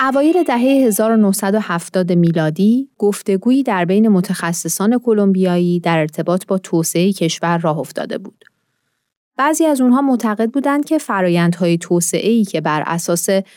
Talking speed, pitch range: 125 wpm, 170-235 Hz